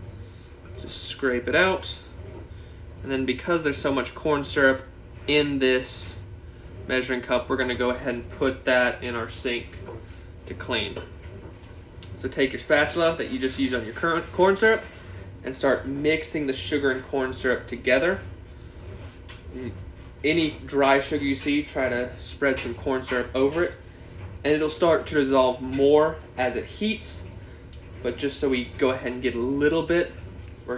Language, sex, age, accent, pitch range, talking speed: English, male, 20-39, American, 95-145 Hz, 160 wpm